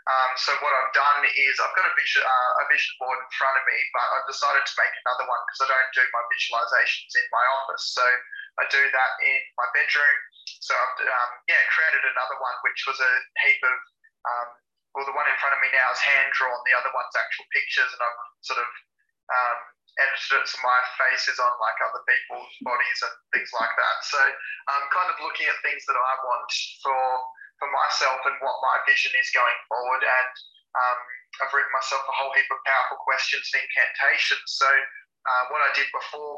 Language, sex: English, male